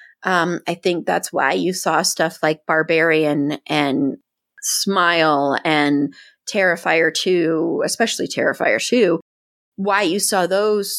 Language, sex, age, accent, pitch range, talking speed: English, female, 30-49, American, 160-210 Hz, 120 wpm